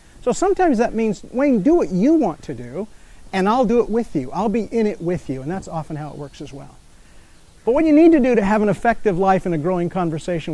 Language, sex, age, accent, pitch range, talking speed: English, male, 40-59, American, 180-250 Hz, 260 wpm